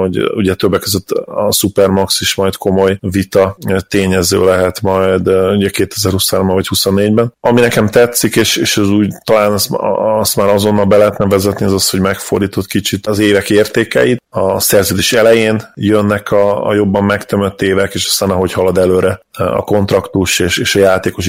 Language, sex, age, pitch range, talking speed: Hungarian, male, 20-39, 95-105 Hz, 170 wpm